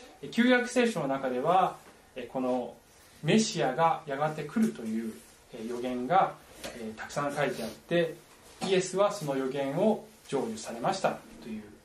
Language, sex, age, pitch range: Japanese, male, 20-39, 135-210 Hz